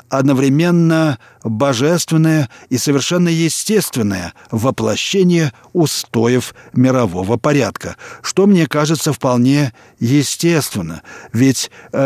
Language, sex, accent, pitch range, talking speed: Russian, male, native, 120-155 Hz, 75 wpm